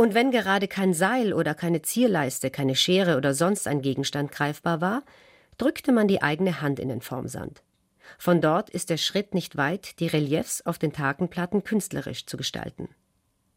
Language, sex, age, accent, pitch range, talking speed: German, female, 40-59, German, 155-205 Hz, 175 wpm